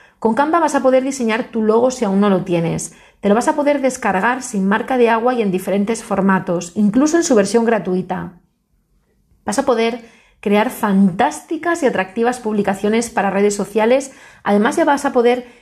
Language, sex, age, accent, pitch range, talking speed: Spanish, female, 30-49, Spanish, 195-260 Hz, 185 wpm